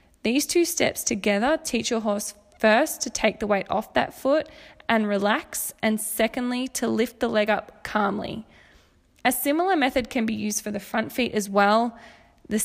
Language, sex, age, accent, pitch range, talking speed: English, female, 20-39, Australian, 215-260 Hz, 180 wpm